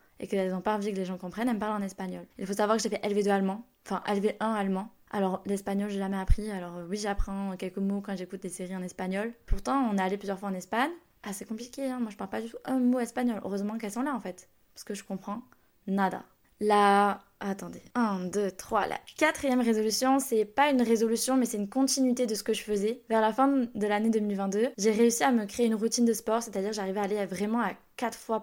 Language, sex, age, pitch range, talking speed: French, female, 10-29, 195-230 Hz, 245 wpm